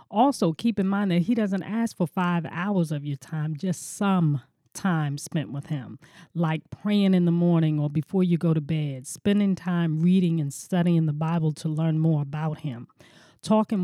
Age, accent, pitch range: 40-59, American, 160-200 Hz